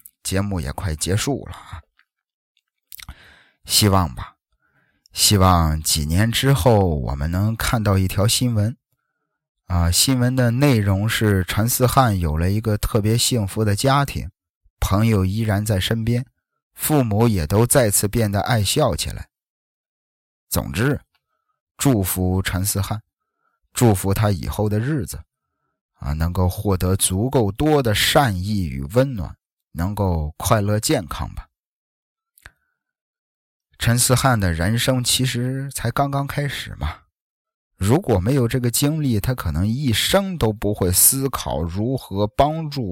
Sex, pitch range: male, 95-130 Hz